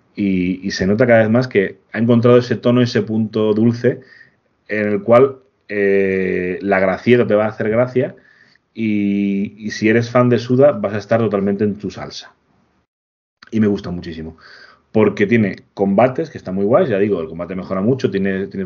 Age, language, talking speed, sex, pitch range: 30-49, Spanish, 195 wpm, male, 95-110 Hz